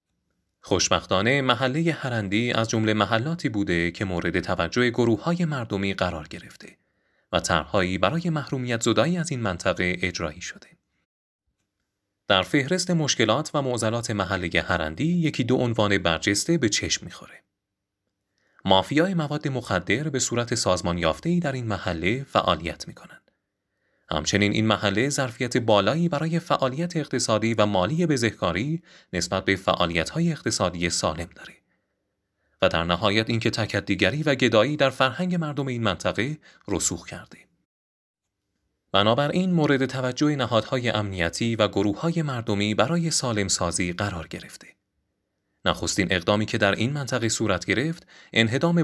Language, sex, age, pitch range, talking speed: Persian, male, 30-49, 95-140 Hz, 130 wpm